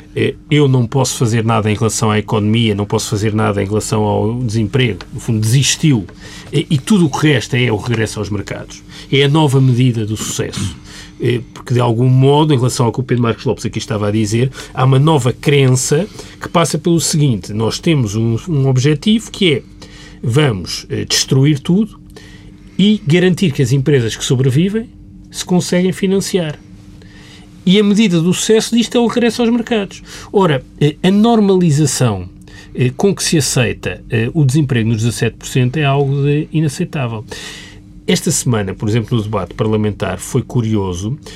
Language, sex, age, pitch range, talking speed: Portuguese, male, 40-59, 110-165 Hz, 165 wpm